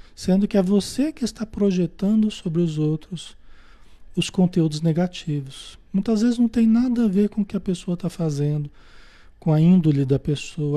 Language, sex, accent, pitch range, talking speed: Portuguese, male, Brazilian, 145-185 Hz, 180 wpm